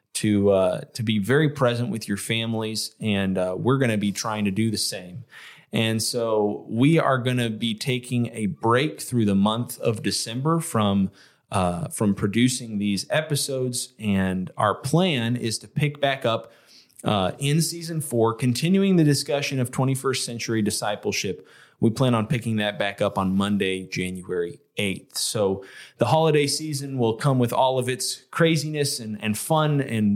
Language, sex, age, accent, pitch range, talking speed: English, male, 20-39, American, 105-130 Hz, 170 wpm